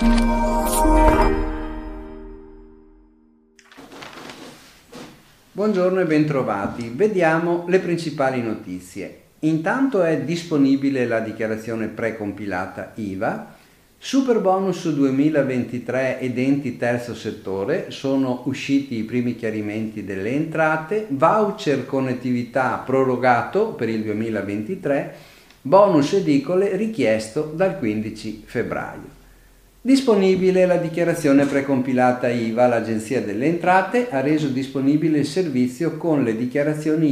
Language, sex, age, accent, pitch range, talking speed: Italian, male, 50-69, native, 115-165 Hz, 90 wpm